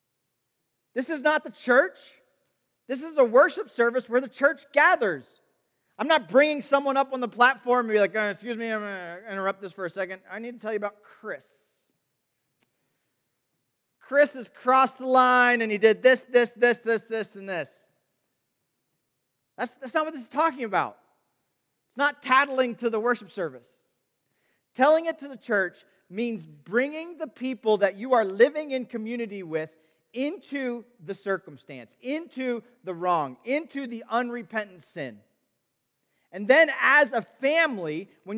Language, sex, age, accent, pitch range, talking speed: English, male, 40-59, American, 215-280 Hz, 165 wpm